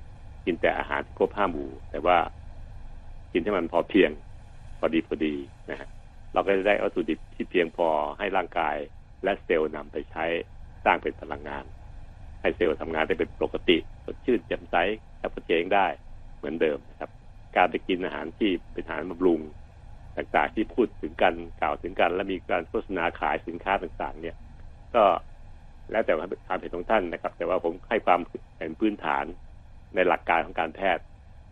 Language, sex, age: Thai, male, 60-79